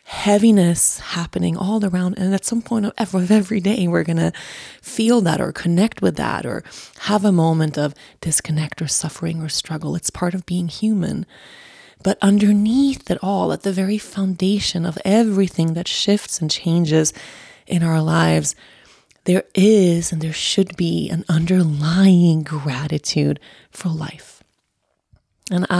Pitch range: 165-205 Hz